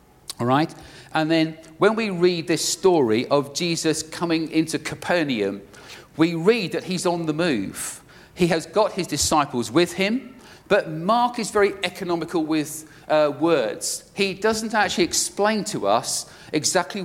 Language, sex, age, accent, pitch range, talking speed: English, male, 50-69, British, 155-195 Hz, 150 wpm